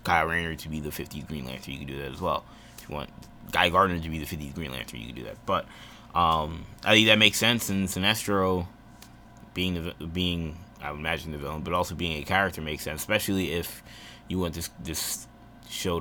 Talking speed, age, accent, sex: 225 wpm, 20-39, American, male